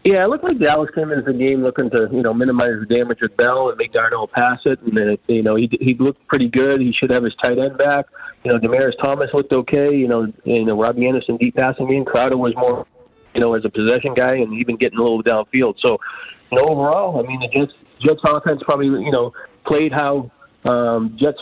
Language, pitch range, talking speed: English, 115-145 Hz, 245 wpm